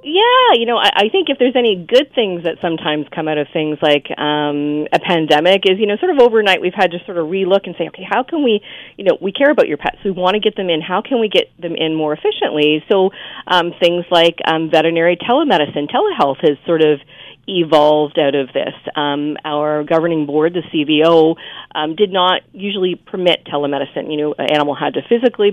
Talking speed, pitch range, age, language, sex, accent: 220 wpm, 150-200 Hz, 40-59, English, female, American